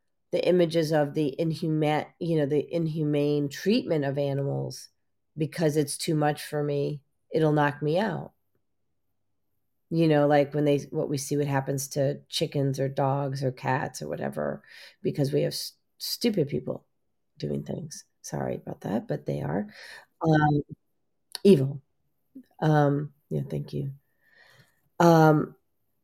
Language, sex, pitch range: English, female, 140-170 Hz